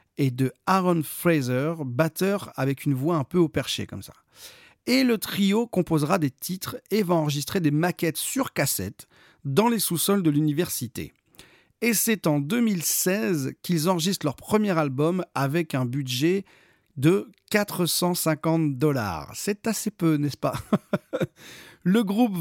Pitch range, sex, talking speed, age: 145-190 Hz, male, 145 wpm, 40-59